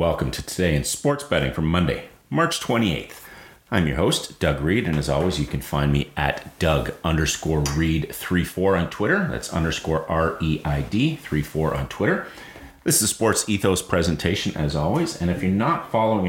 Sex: male